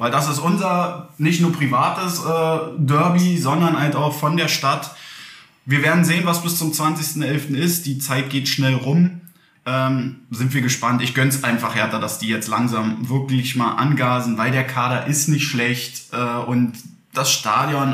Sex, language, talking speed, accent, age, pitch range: male, German, 180 wpm, German, 20-39, 135-160 Hz